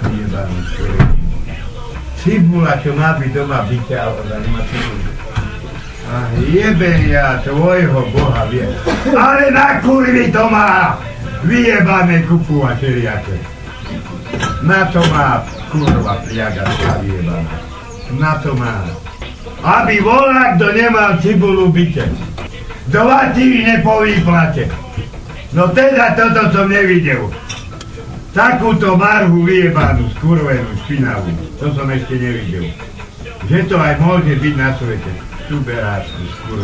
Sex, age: male, 60-79